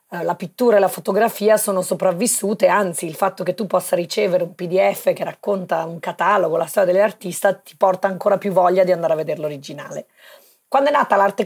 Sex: female